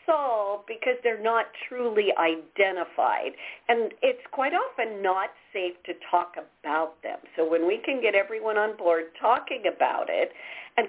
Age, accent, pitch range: 50-69, American, 185-305 Hz